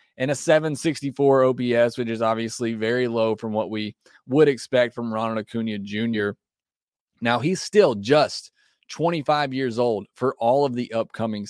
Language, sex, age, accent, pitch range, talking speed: English, male, 30-49, American, 115-145 Hz, 155 wpm